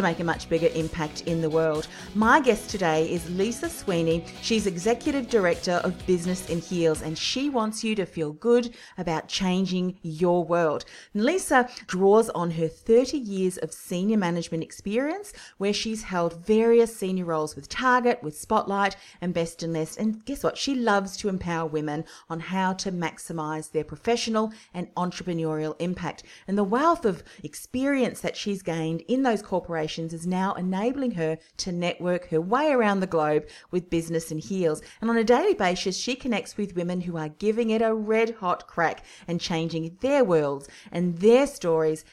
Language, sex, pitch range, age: English, female, 165-220 Hz, 40-59